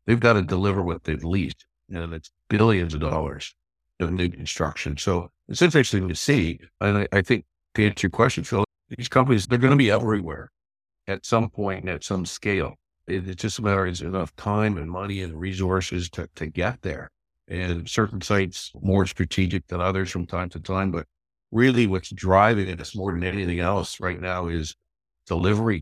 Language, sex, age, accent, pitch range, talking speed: English, male, 60-79, American, 85-100 Hz, 200 wpm